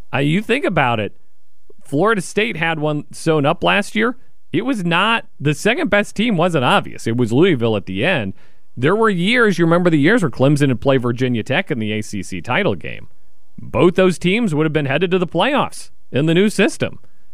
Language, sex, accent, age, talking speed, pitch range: English, male, American, 40-59, 205 wpm, 125-200 Hz